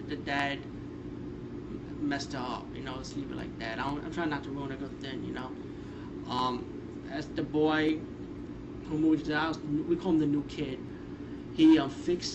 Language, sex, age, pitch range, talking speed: English, male, 20-39, 135-155 Hz, 190 wpm